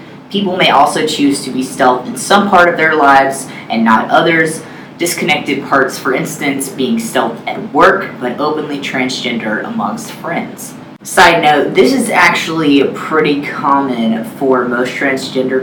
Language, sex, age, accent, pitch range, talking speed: English, female, 20-39, American, 125-155 Hz, 150 wpm